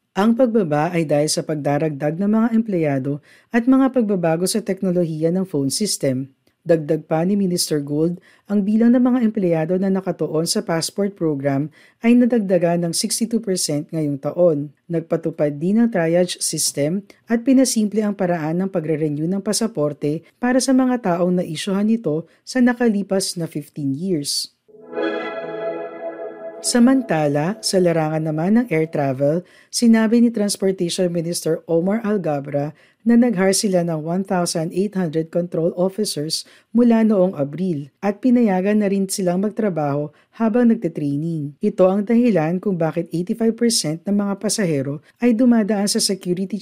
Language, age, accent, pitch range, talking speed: Filipino, 40-59, native, 155-210 Hz, 135 wpm